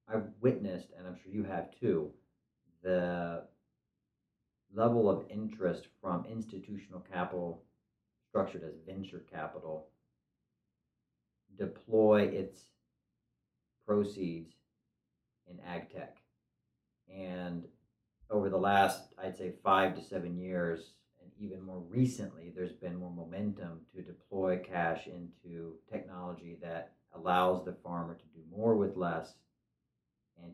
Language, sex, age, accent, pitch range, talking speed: English, male, 40-59, American, 85-100 Hz, 115 wpm